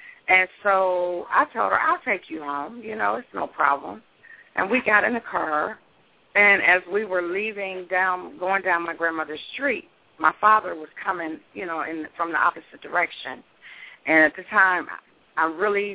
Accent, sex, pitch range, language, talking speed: American, female, 160-205 Hz, English, 175 wpm